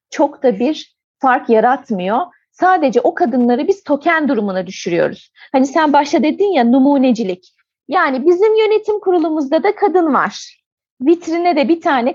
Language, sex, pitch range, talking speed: Turkish, female, 230-345 Hz, 145 wpm